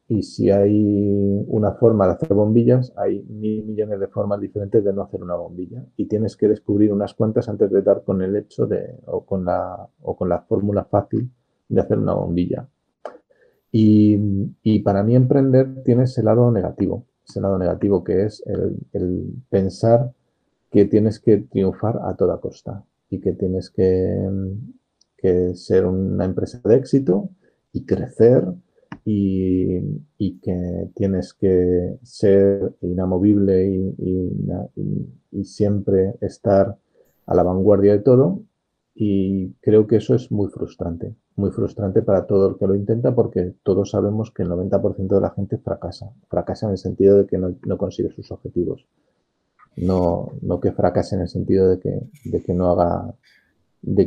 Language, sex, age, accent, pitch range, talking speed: Spanish, male, 40-59, Spanish, 95-110 Hz, 160 wpm